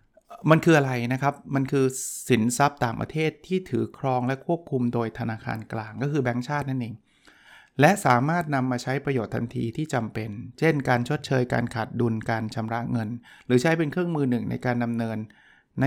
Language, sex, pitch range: Thai, male, 120-145 Hz